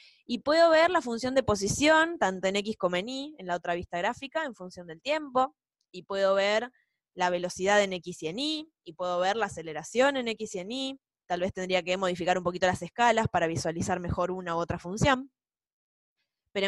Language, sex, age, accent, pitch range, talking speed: Spanish, female, 20-39, Argentinian, 180-245 Hz, 210 wpm